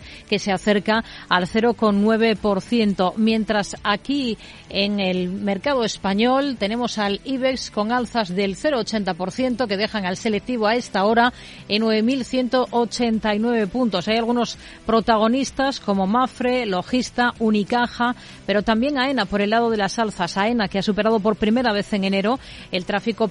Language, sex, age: Spanish, female, 40-59